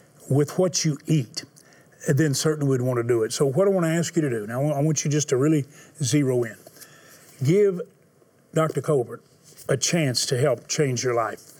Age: 40-59